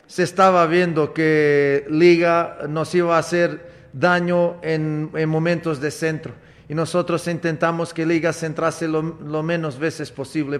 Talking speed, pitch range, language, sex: 145 wpm, 155-175 Hz, Spanish, male